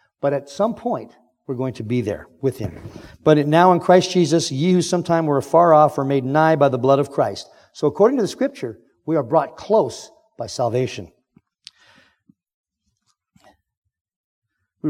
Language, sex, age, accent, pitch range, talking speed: English, male, 50-69, American, 120-160 Hz, 175 wpm